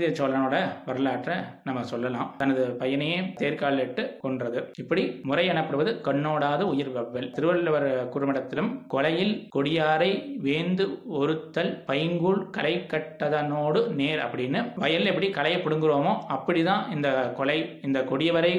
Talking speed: 40 wpm